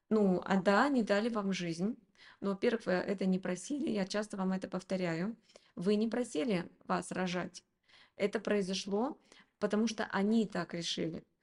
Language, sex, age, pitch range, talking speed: Russian, female, 20-39, 185-220 Hz, 155 wpm